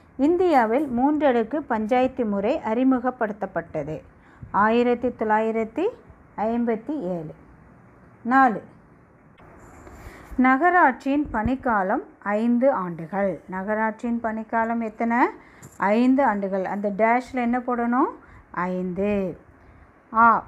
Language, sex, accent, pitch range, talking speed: Tamil, female, native, 210-265 Hz, 75 wpm